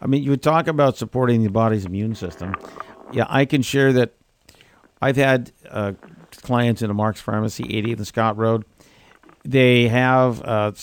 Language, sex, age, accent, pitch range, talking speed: English, male, 50-69, American, 110-130 Hz, 170 wpm